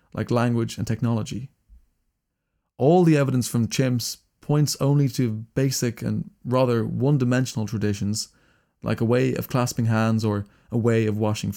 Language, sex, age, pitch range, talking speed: English, male, 20-39, 110-135 Hz, 145 wpm